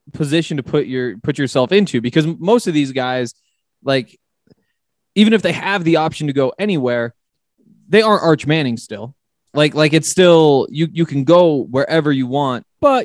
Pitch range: 130-175 Hz